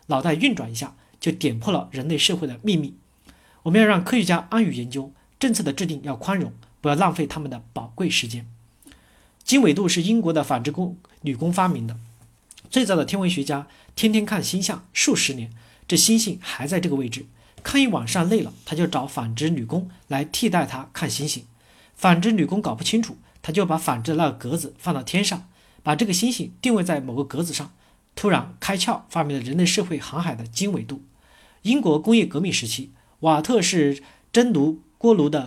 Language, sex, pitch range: Chinese, male, 135-195 Hz